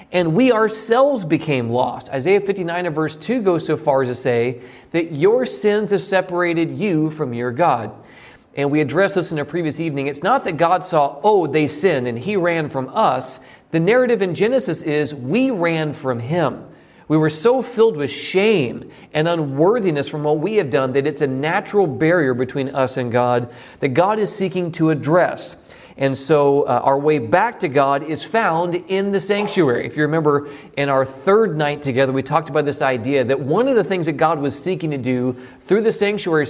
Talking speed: 200 wpm